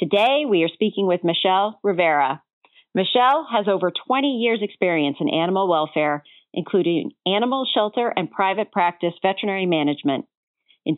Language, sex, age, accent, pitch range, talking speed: English, female, 40-59, American, 185-235 Hz, 135 wpm